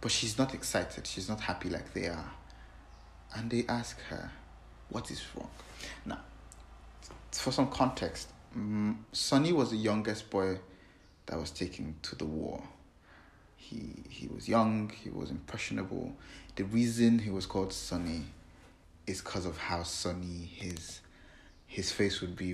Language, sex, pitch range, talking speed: English, male, 90-110 Hz, 145 wpm